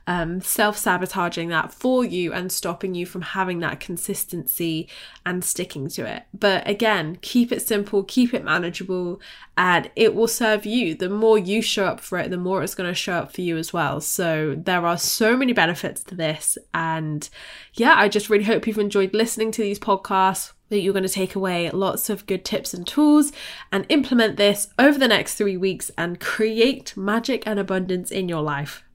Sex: female